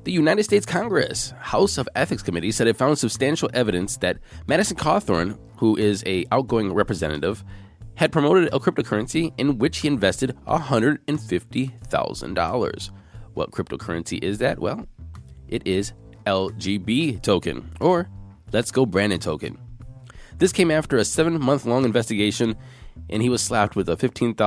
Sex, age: male, 20-39